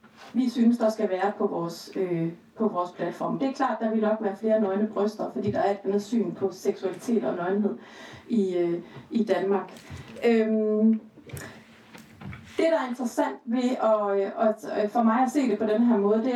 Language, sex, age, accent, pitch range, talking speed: Danish, female, 30-49, native, 205-250 Hz, 200 wpm